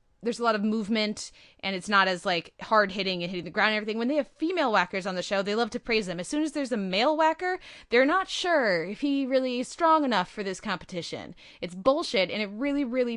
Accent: American